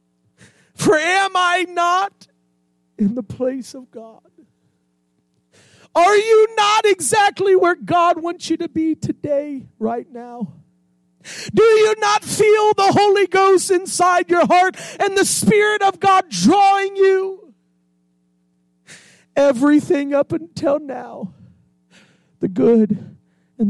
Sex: male